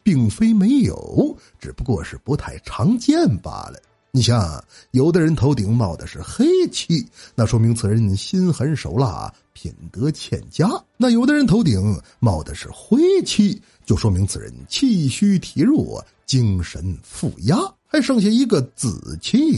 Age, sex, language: 50-69, male, Chinese